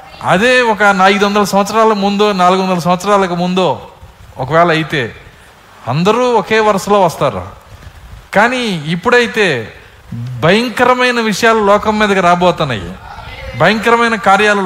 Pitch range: 145-210 Hz